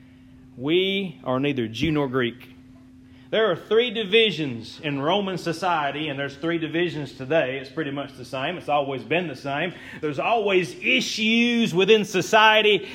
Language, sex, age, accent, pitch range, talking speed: English, male, 30-49, American, 155-225 Hz, 155 wpm